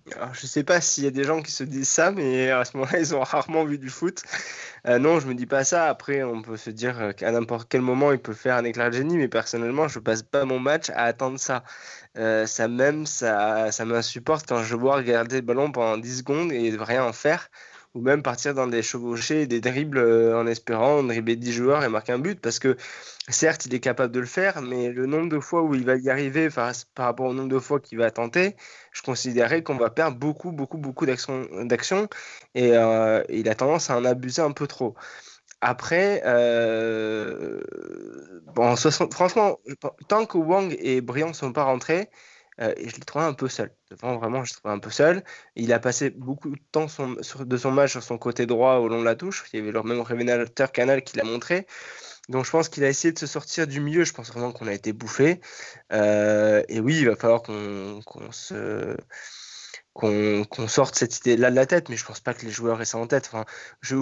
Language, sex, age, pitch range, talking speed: French, male, 20-39, 115-145 Hz, 235 wpm